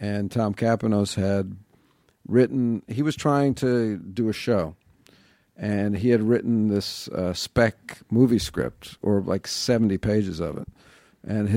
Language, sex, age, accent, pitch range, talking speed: English, male, 50-69, American, 95-115 Hz, 145 wpm